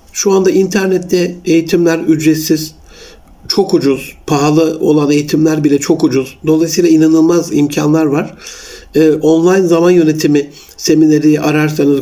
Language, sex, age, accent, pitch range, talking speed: Turkish, male, 60-79, native, 145-170 Hz, 110 wpm